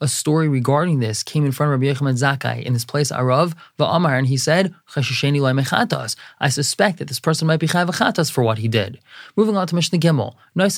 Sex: male